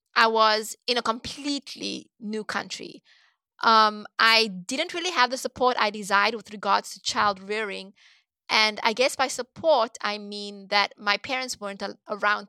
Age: 20-39